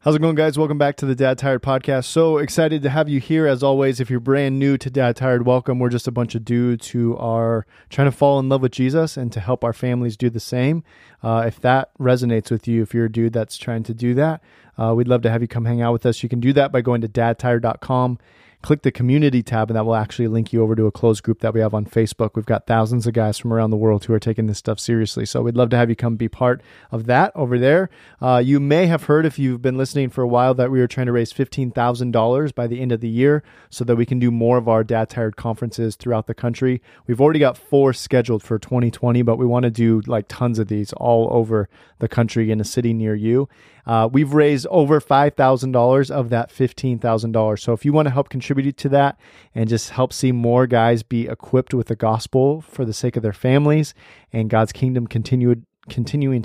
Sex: male